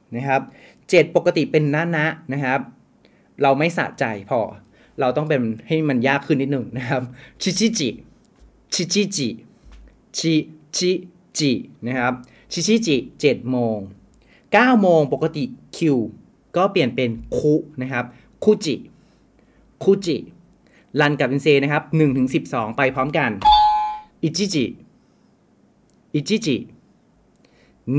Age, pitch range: 30-49, 130-190 Hz